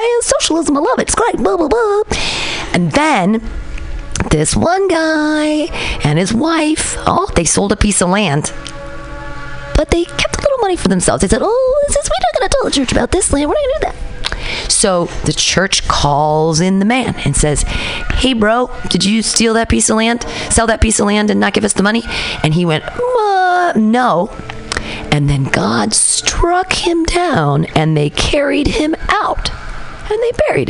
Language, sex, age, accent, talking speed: English, female, 40-59, American, 195 wpm